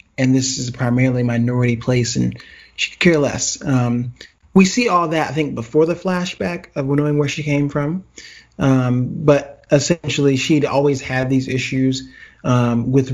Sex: male